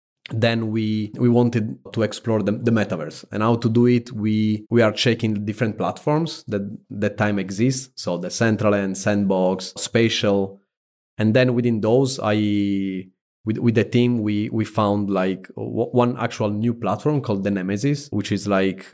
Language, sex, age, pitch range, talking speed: English, male, 30-49, 100-115 Hz, 170 wpm